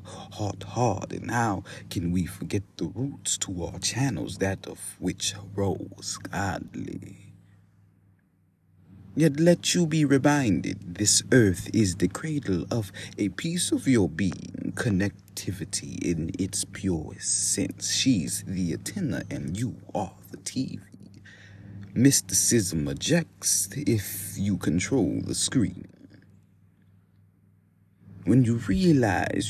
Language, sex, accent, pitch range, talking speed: English, male, American, 95-105 Hz, 115 wpm